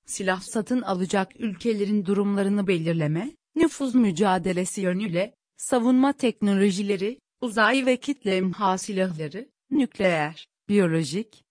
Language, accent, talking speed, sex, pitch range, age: Turkish, native, 95 wpm, female, 190-245 Hz, 40-59